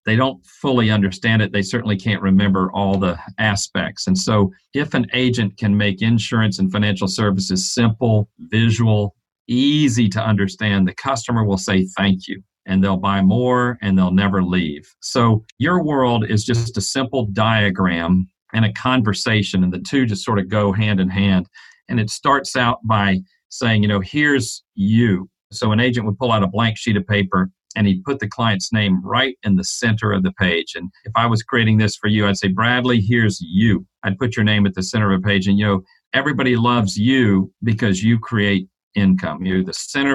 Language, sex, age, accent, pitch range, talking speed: English, male, 50-69, American, 100-120 Hz, 200 wpm